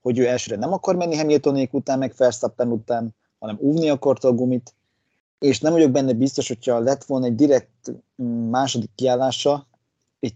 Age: 30-49